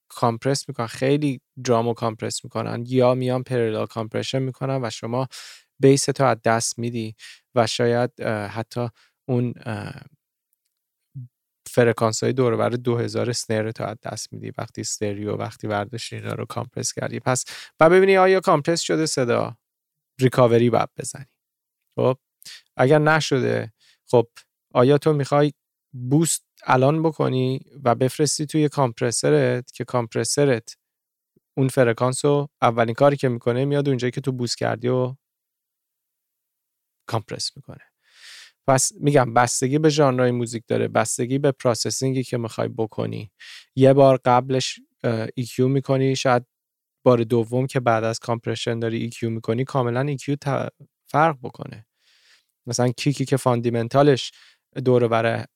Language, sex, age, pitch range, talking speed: Persian, male, 20-39, 115-140 Hz, 125 wpm